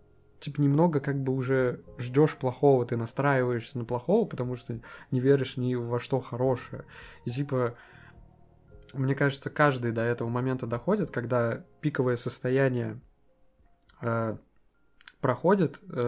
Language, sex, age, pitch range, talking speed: Russian, male, 20-39, 125-150 Hz, 125 wpm